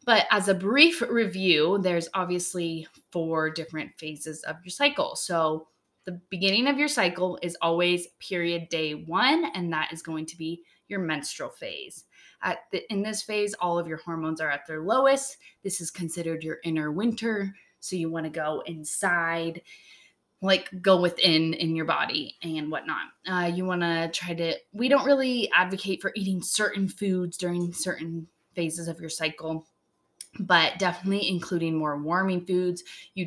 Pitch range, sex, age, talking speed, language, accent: 165-195 Hz, female, 20-39, 165 wpm, English, American